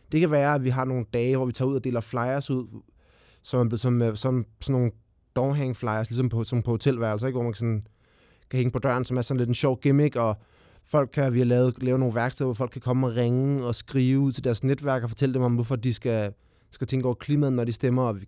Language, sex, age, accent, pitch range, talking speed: Danish, male, 20-39, native, 115-135 Hz, 255 wpm